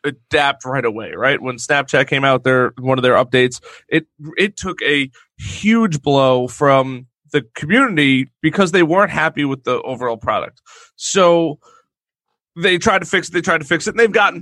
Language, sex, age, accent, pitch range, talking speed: English, male, 30-49, American, 140-185 Hz, 185 wpm